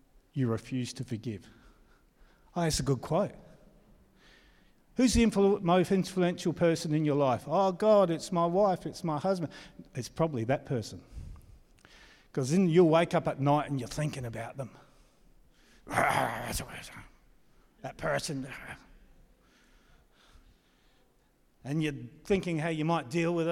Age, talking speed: 50-69, 130 wpm